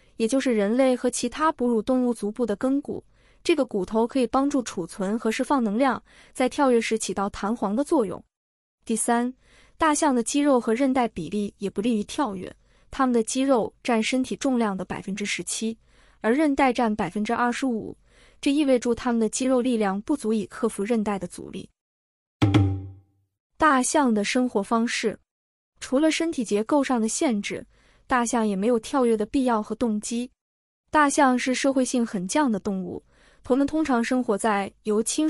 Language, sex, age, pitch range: Chinese, female, 20-39, 210-260 Hz